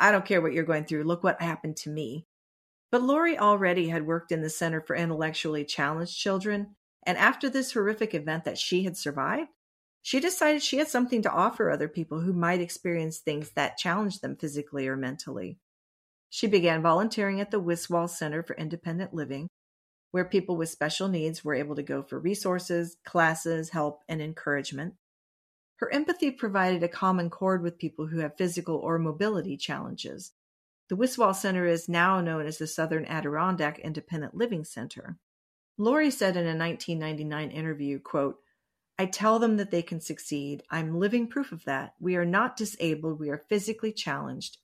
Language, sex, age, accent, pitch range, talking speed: English, female, 40-59, American, 155-200 Hz, 175 wpm